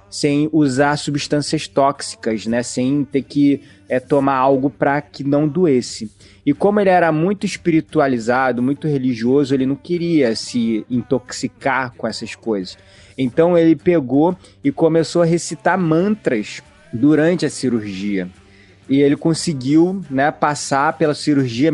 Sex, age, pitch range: male, 20-39, 130-170 Hz